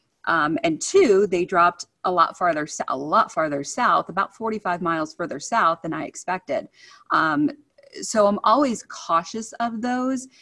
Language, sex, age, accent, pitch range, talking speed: English, female, 30-49, American, 165-230 Hz, 155 wpm